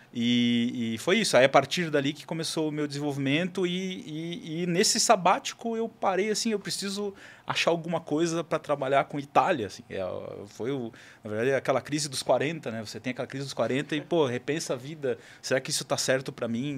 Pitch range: 115-145 Hz